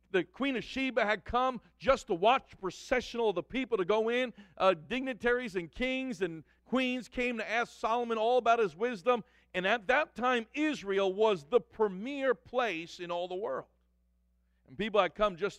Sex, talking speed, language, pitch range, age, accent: male, 190 wpm, English, 195-250 Hz, 50-69, American